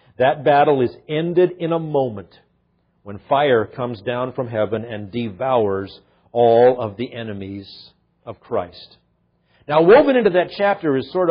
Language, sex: English, male